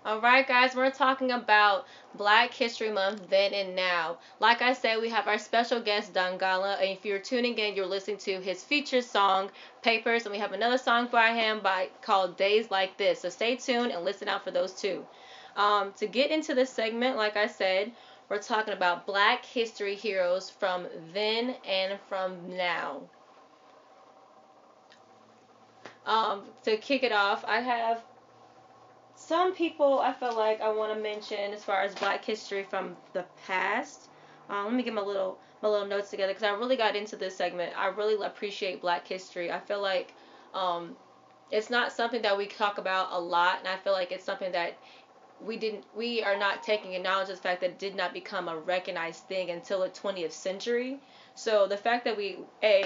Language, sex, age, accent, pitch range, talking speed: English, female, 20-39, American, 185-230 Hz, 190 wpm